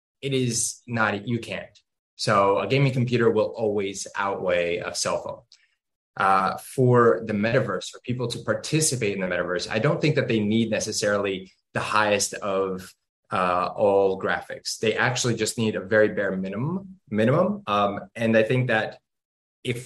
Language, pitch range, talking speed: English, 105-125 Hz, 165 wpm